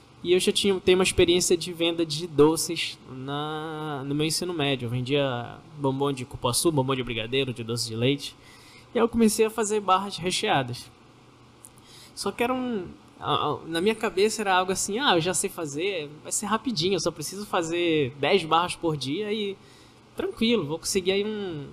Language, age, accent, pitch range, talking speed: Portuguese, 10-29, Brazilian, 145-205 Hz, 190 wpm